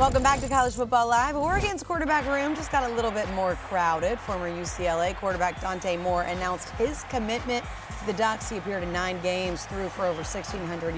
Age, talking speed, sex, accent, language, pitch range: 30-49, 195 wpm, female, American, English, 180-265 Hz